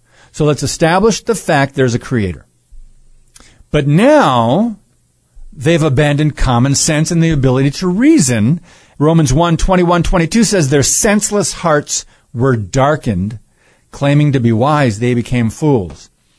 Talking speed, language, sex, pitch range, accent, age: 130 wpm, English, male, 110-145 Hz, American, 50-69